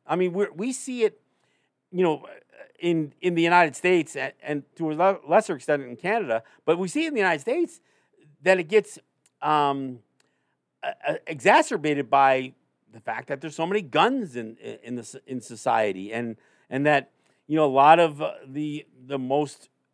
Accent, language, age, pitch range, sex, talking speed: American, English, 50-69, 130-175 Hz, male, 185 wpm